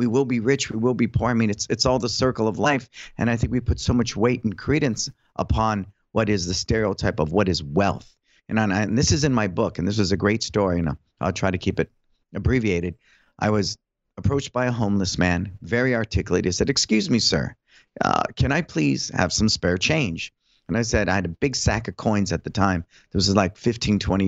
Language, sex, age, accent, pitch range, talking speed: English, male, 50-69, American, 95-120 Hz, 240 wpm